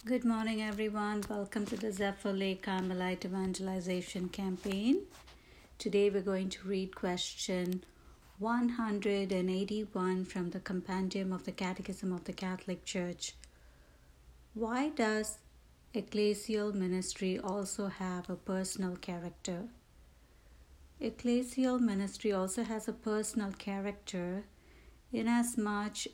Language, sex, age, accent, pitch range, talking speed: English, female, 60-79, Indian, 185-220 Hz, 110 wpm